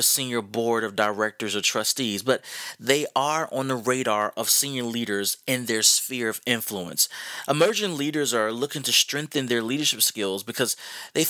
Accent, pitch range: American, 115-160 Hz